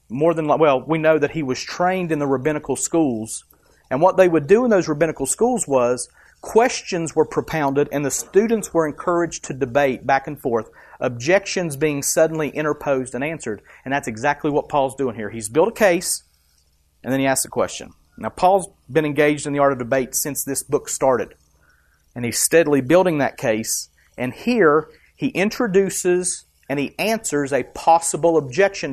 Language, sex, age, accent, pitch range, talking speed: English, male, 40-59, American, 120-170 Hz, 185 wpm